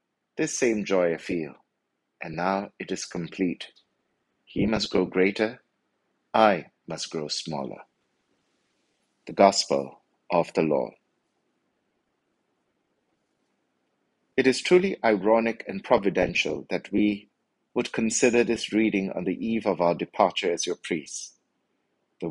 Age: 60-79